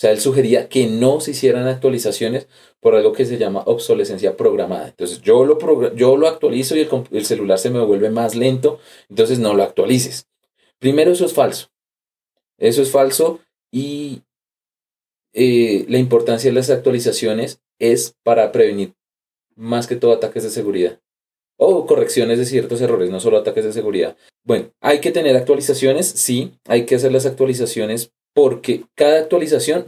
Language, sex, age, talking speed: Spanish, male, 30-49, 165 wpm